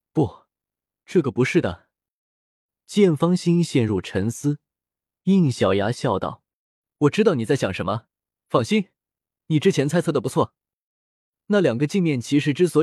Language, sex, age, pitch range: Chinese, male, 20-39, 115-170 Hz